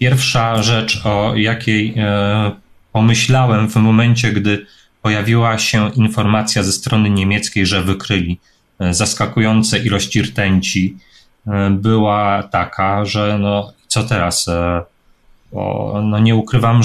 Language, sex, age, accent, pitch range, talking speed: Polish, male, 30-49, native, 105-125 Hz, 100 wpm